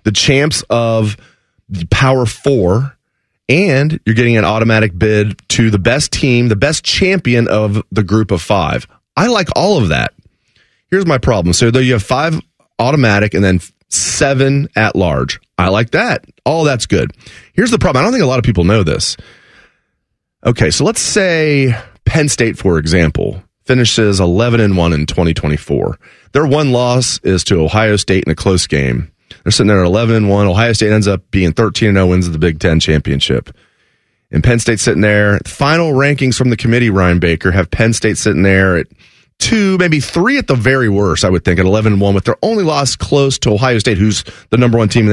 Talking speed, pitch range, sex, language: 190 wpm, 95-130 Hz, male, English